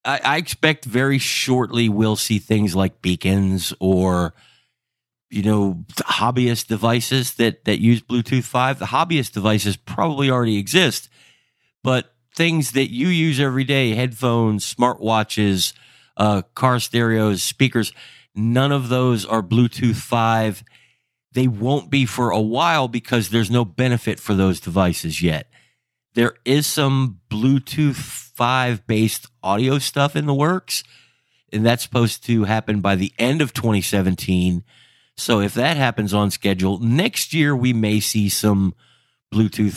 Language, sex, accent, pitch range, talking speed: English, male, American, 105-130 Hz, 135 wpm